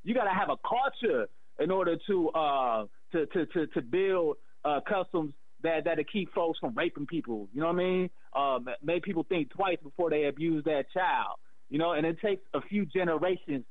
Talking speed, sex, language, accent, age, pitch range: 200 wpm, male, English, American, 30-49, 150-185 Hz